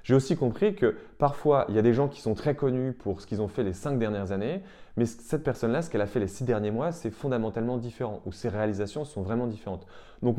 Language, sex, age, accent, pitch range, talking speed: French, male, 20-39, French, 100-125 Hz, 260 wpm